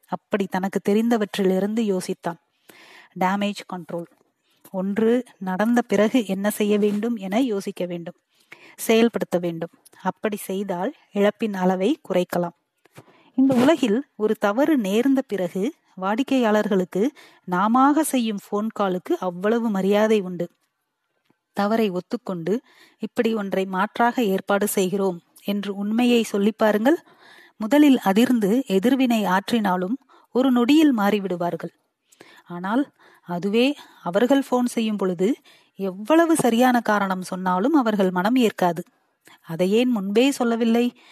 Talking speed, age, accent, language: 95 wpm, 30-49, native, Tamil